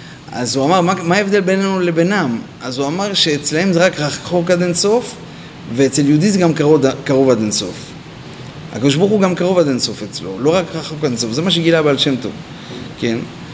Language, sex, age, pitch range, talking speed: Hebrew, male, 30-49, 145-205 Hz, 190 wpm